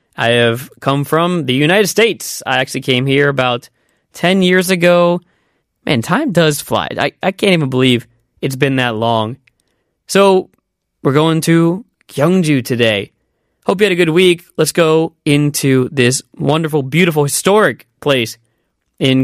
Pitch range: 125-165 Hz